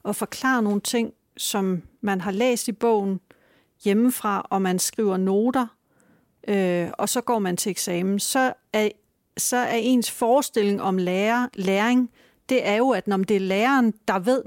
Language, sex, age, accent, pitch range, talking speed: Danish, female, 40-59, native, 195-240 Hz, 160 wpm